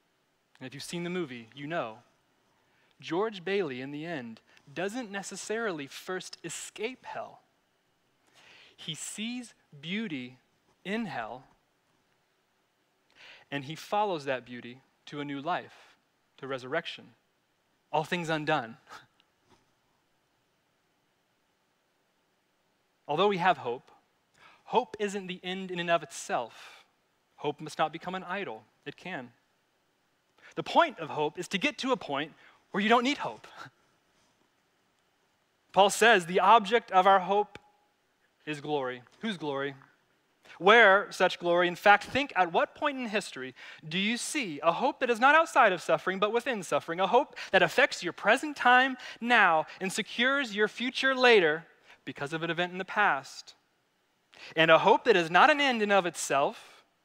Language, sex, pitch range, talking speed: English, male, 155-230 Hz, 145 wpm